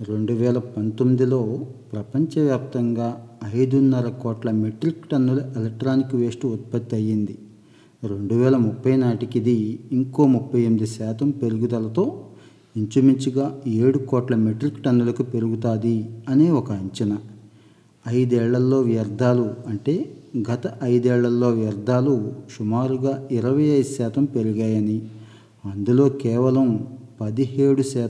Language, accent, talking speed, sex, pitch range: Telugu, native, 90 wpm, male, 110-130 Hz